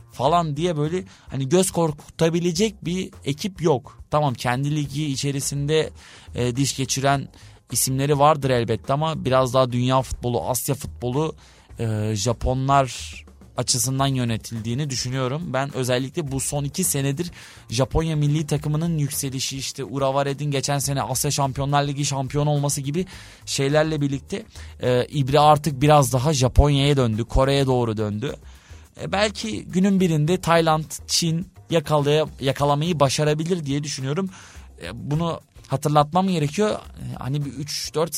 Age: 20-39